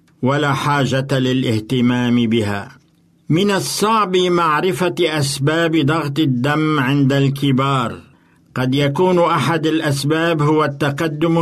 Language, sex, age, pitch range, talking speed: Arabic, male, 60-79, 135-165 Hz, 95 wpm